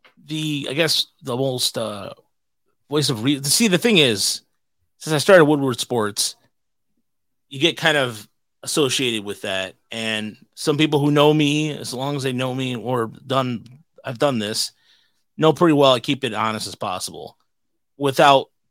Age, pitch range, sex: 30-49, 110-135 Hz, male